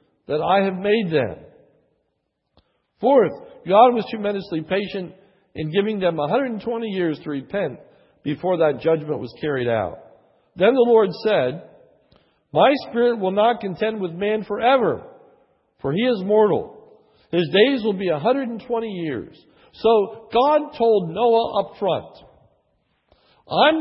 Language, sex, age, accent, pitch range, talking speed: English, male, 60-79, American, 160-235 Hz, 130 wpm